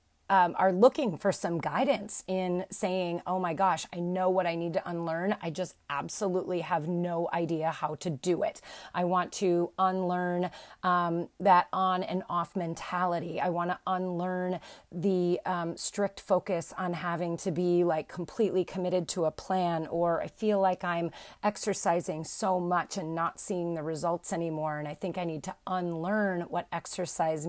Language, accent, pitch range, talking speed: English, American, 170-190 Hz, 170 wpm